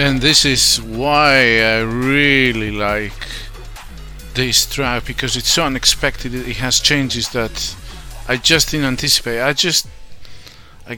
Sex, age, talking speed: male, 40-59, 130 wpm